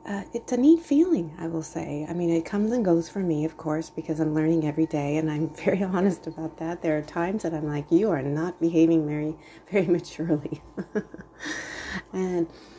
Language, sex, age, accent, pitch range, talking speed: English, female, 30-49, American, 150-180 Hz, 200 wpm